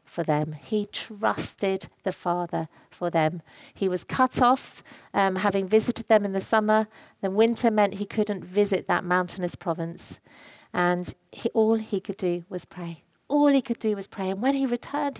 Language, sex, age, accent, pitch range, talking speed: English, female, 40-59, British, 180-230 Hz, 180 wpm